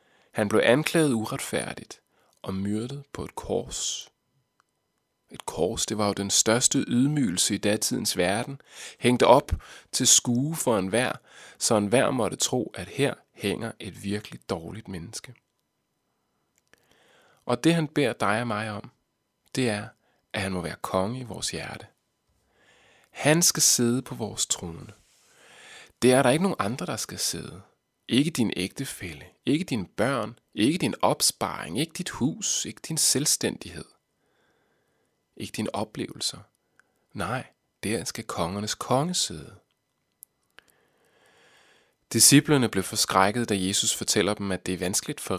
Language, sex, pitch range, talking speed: Danish, male, 100-140 Hz, 140 wpm